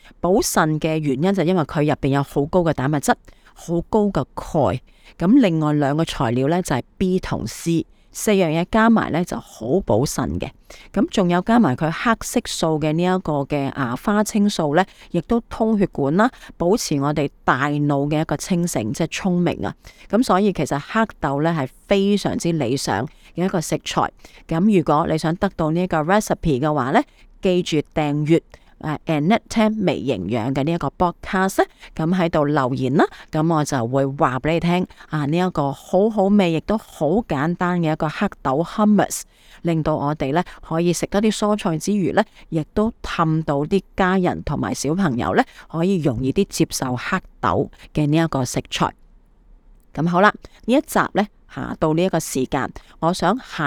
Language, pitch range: Chinese, 150-195 Hz